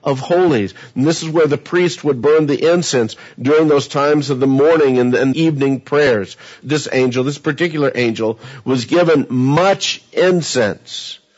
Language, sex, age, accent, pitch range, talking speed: English, male, 50-69, American, 125-165 Hz, 160 wpm